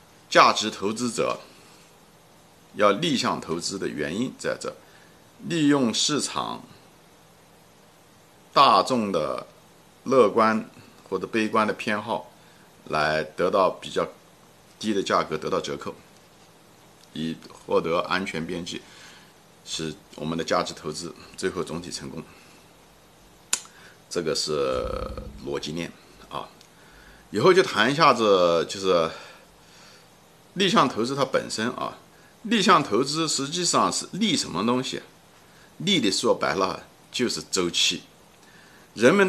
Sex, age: male, 50-69